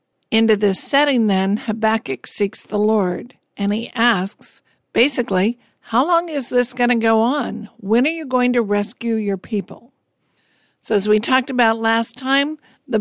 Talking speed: 165 wpm